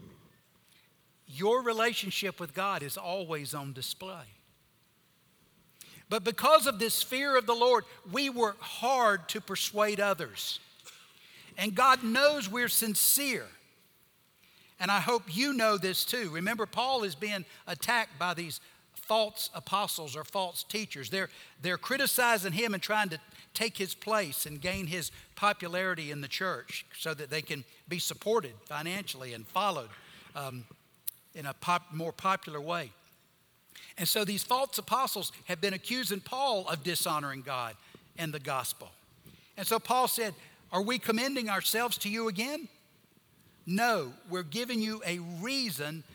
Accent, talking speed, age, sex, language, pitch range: American, 145 wpm, 60-79, male, English, 160-220 Hz